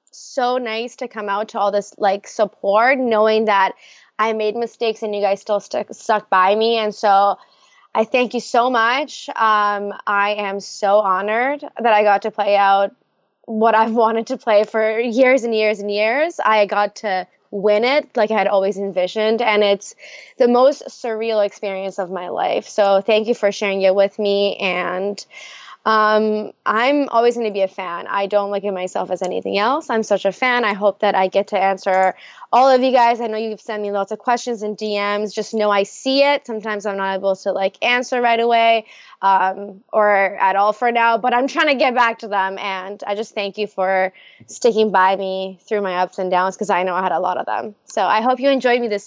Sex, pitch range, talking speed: female, 200-230 Hz, 220 wpm